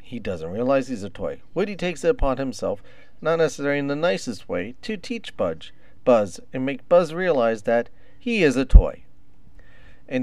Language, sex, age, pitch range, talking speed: English, male, 40-59, 115-160 Hz, 180 wpm